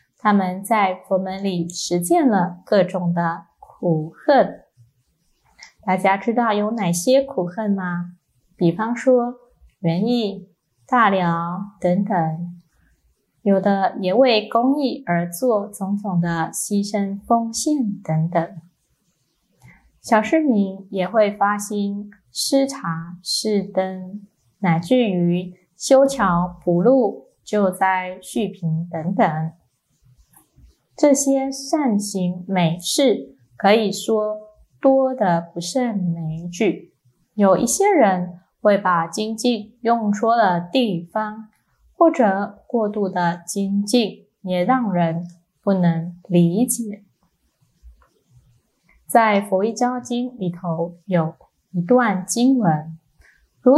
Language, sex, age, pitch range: Chinese, female, 20-39, 175-225 Hz